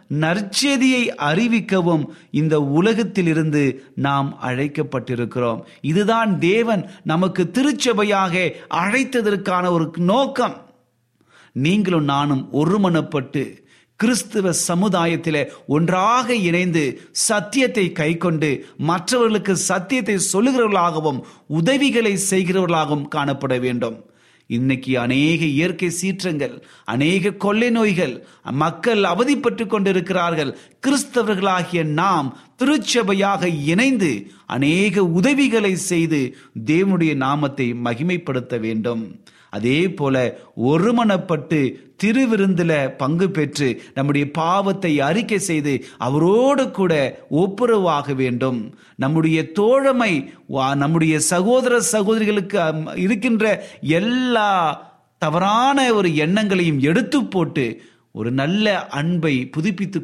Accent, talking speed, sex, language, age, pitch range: native, 80 wpm, male, Tamil, 30-49, 145-210 Hz